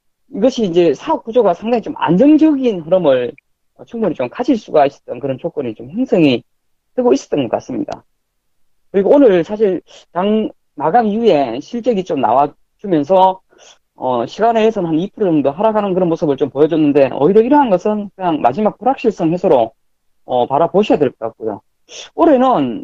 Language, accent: Korean, native